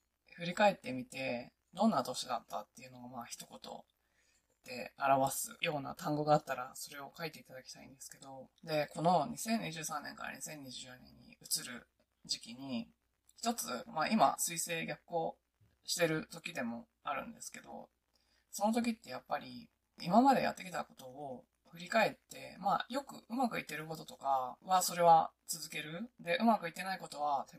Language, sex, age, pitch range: Japanese, female, 20-39, 135-230 Hz